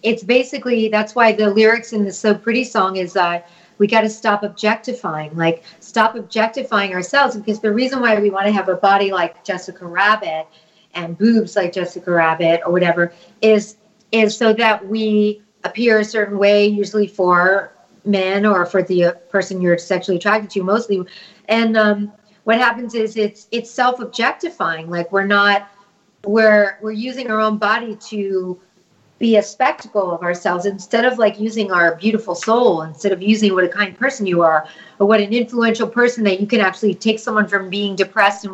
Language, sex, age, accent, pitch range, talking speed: English, female, 40-59, American, 190-225 Hz, 185 wpm